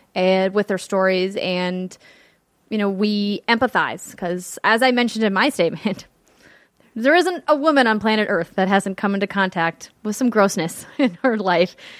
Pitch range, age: 195-260 Hz, 20-39